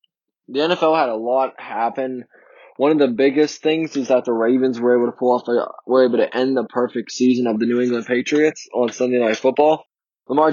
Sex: male